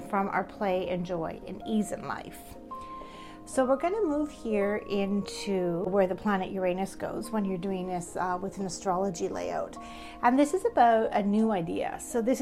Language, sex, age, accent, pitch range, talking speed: English, female, 30-49, American, 195-245 Hz, 190 wpm